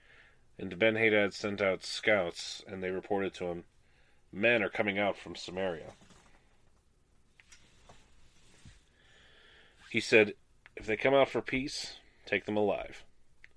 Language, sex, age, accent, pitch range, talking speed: English, male, 30-49, American, 90-110 Hz, 125 wpm